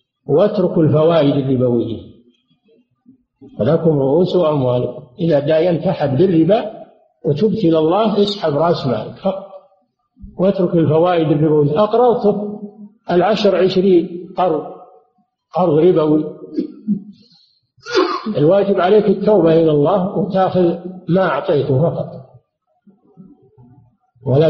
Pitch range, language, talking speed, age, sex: 155-210 Hz, Arabic, 85 wpm, 50-69, male